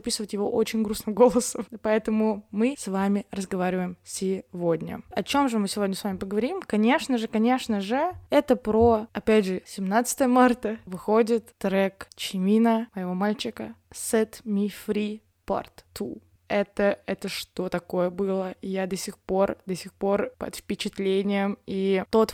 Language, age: Russian, 20-39